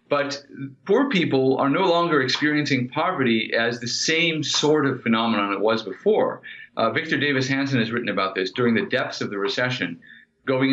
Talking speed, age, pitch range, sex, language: 180 wpm, 40-59, 120-140 Hz, male, English